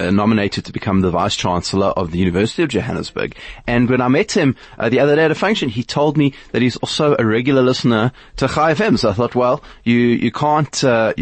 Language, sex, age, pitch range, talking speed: English, male, 20-39, 95-125 Hz, 230 wpm